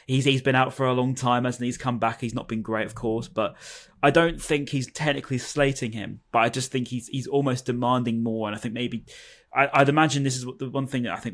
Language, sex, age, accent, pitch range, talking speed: English, male, 10-29, British, 115-135 Hz, 275 wpm